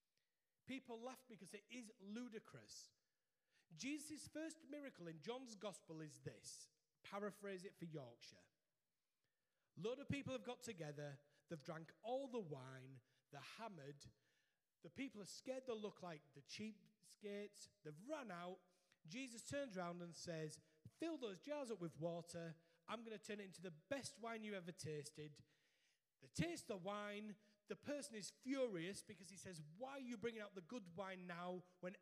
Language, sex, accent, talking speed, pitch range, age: English, male, British, 165 wpm, 155-210 Hz, 30-49